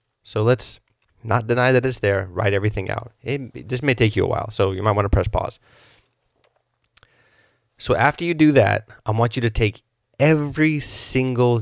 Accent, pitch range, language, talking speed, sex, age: American, 105-120 Hz, English, 190 wpm, male, 20-39